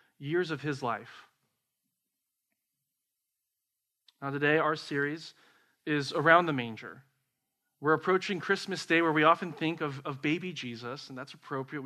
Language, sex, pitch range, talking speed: English, male, 130-165 Hz, 135 wpm